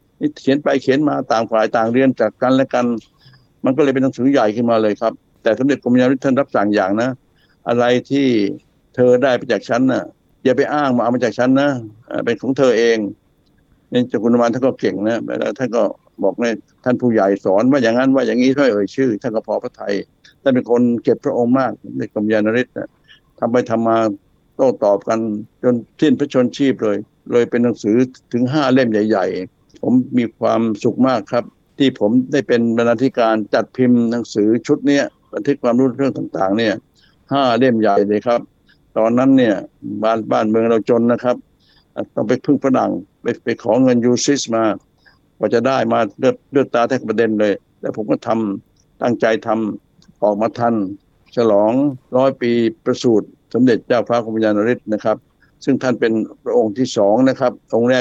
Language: Thai